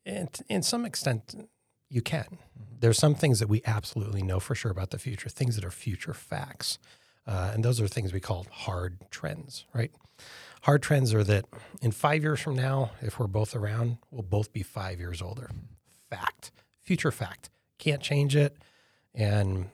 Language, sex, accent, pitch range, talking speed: English, male, American, 95-130 Hz, 180 wpm